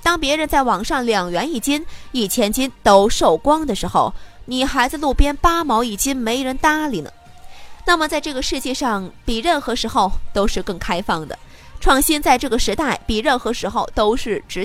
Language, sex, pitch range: Chinese, female, 205-295 Hz